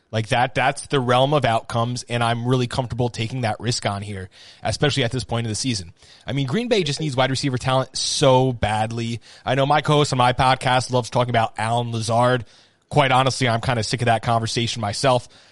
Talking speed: 215 wpm